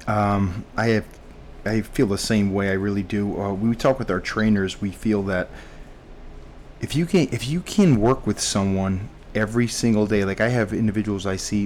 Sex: male